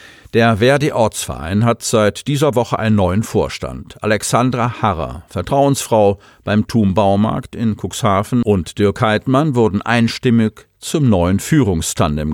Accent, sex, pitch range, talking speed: German, male, 95-125 Hz, 125 wpm